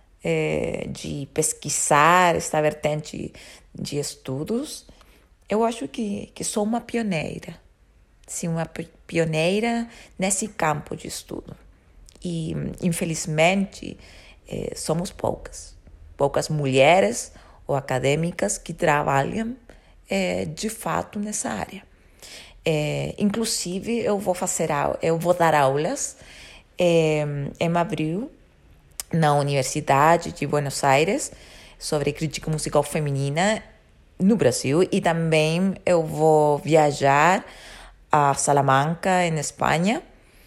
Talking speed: 95 wpm